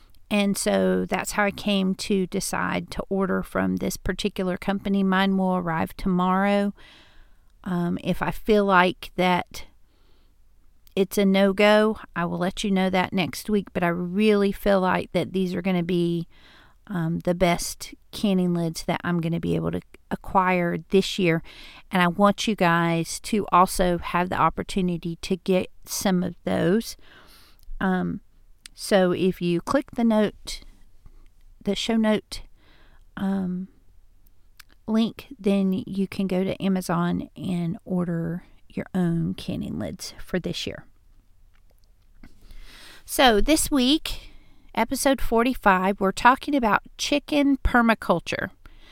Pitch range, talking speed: 175-215 Hz, 140 wpm